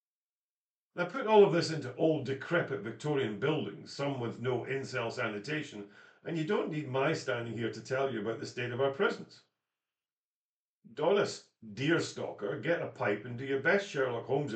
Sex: male